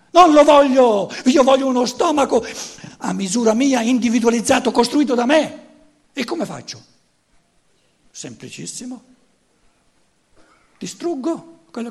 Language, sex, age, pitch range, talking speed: Italian, male, 60-79, 180-255 Hz, 100 wpm